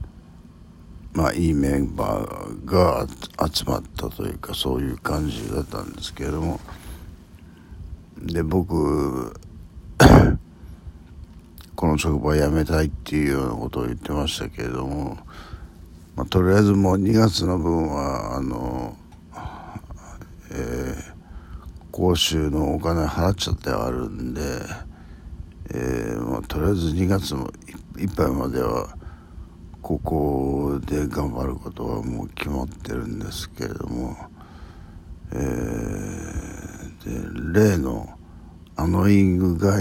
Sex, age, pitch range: male, 60-79, 75-95 Hz